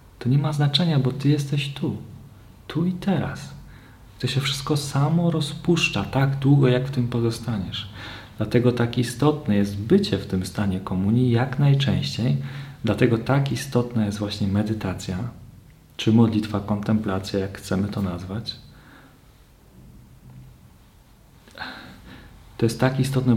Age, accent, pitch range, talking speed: 40-59, native, 105-135 Hz, 130 wpm